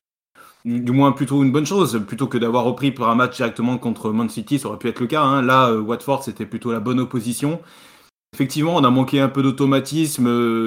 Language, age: French, 20-39